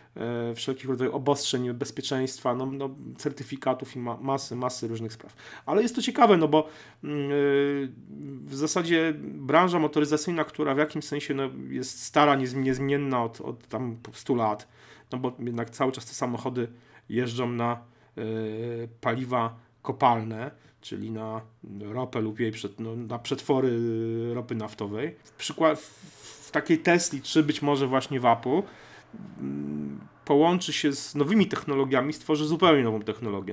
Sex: male